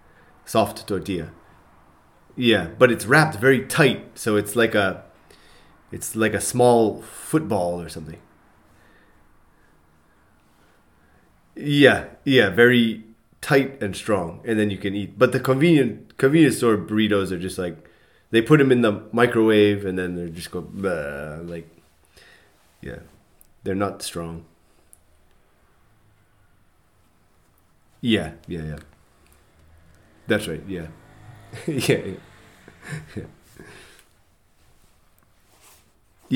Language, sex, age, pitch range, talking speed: English, male, 30-49, 85-115 Hz, 100 wpm